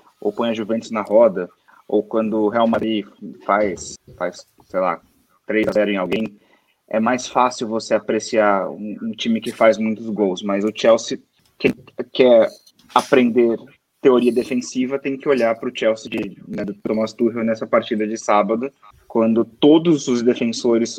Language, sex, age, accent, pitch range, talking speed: Portuguese, male, 20-39, Brazilian, 110-135 Hz, 165 wpm